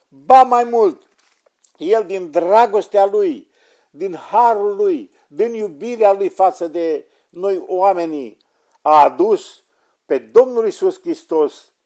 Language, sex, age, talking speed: Romanian, male, 50-69, 115 wpm